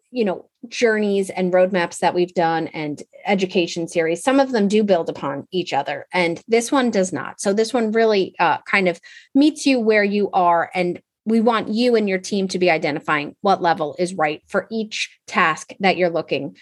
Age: 30-49